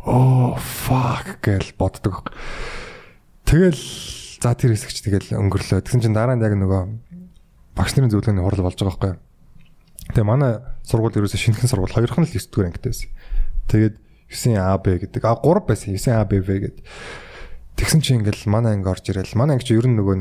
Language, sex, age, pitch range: Korean, male, 20-39, 95-125 Hz